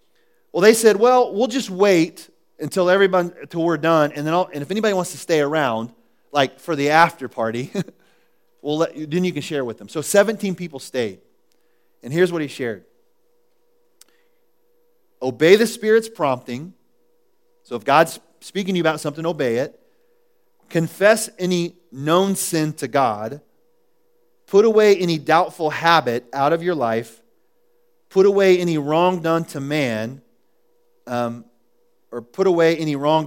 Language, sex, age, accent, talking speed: English, male, 30-49, American, 155 wpm